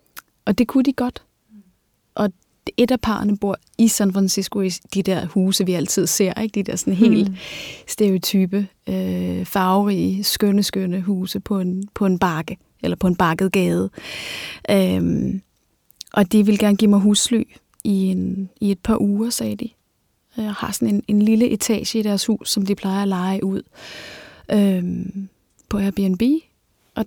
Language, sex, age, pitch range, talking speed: Danish, female, 30-49, 190-215 Hz, 170 wpm